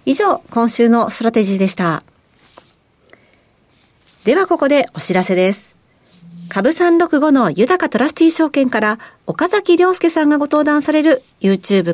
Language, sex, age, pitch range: Japanese, female, 50-69, 195-315 Hz